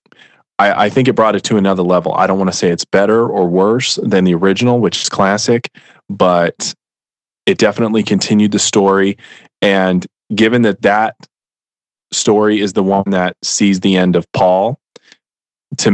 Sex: male